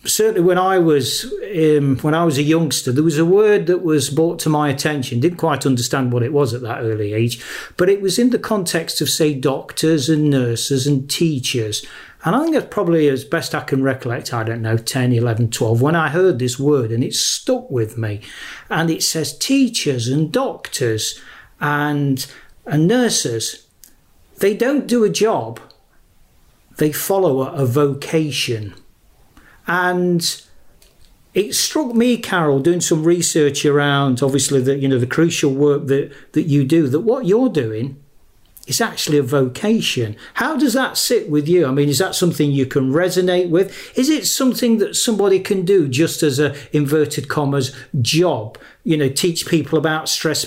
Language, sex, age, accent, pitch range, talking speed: English, male, 40-59, British, 135-180 Hz, 180 wpm